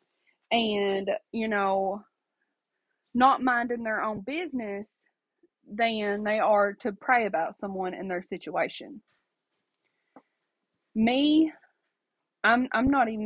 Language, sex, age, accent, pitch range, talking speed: English, female, 20-39, American, 205-275 Hz, 105 wpm